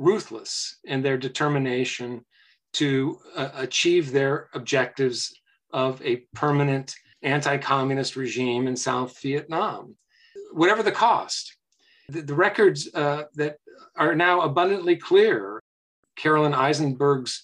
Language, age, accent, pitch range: English, 50-69, American, 130-150 Hz